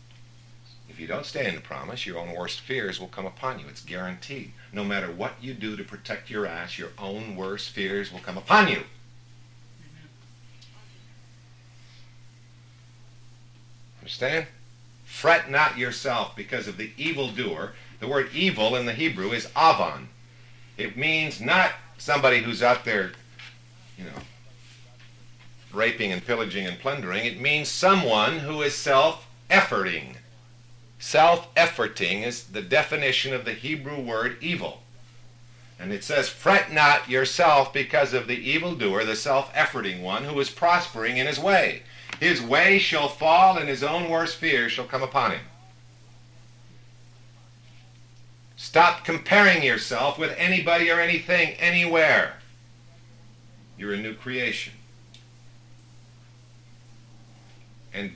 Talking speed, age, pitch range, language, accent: 130 wpm, 50-69, 120-140 Hz, English, American